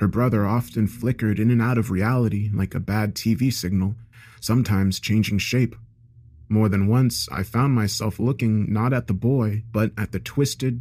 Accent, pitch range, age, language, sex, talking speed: American, 105-120 Hz, 30-49, English, male, 180 wpm